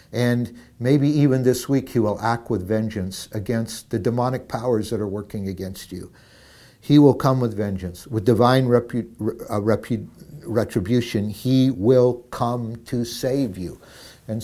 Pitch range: 105-130 Hz